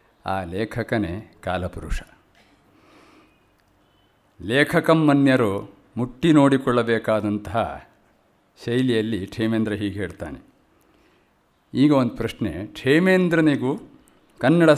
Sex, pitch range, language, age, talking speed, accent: male, 105-140 Hz, Kannada, 50-69, 60 wpm, native